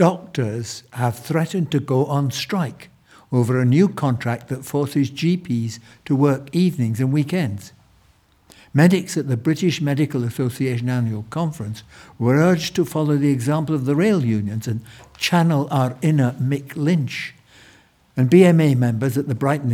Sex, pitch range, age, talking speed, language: male, 125-155 Hz, 60-79, 150 wpm, English